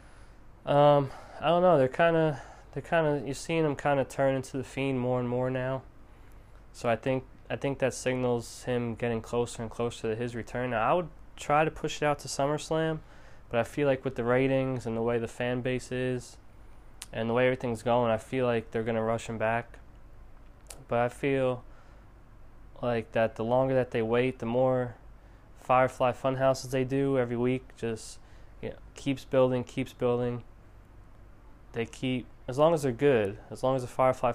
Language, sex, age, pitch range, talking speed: English, male, 20-39, 110-130 Hz, 195 wpm